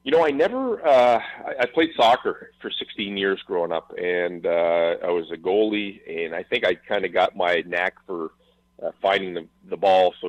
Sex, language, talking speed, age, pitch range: male, English, 205 wpm, 40-59, 85-115 Hz